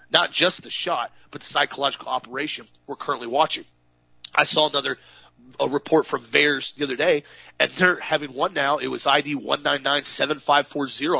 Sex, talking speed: male, 160 wpm